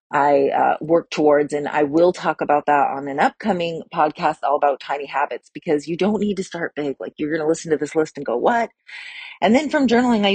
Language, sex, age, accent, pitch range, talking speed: English, female, 30-49, American, 155-195 Hz, 240 wpm